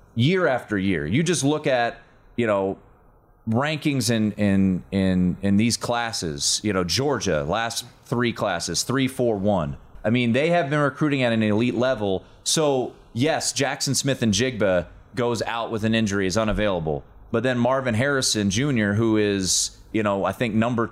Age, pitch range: 30-49, 100-130 Hz